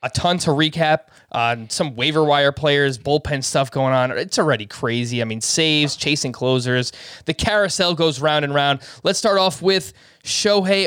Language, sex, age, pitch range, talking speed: English, male, 20-39, 135-170 Hz, 175 wpm